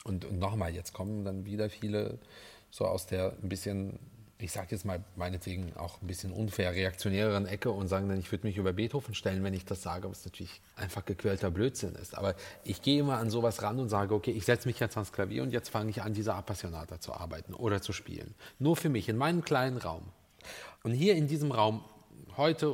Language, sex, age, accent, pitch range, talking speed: German, male, 40-59, German, 100-135 Hz, 220 wpm